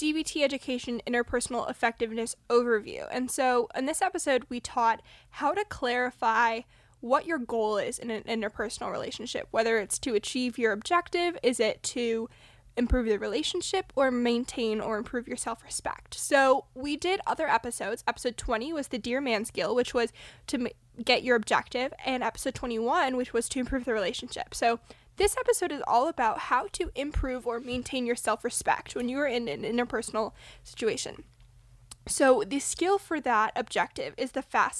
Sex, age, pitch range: female, 10-29, 230-280 Hz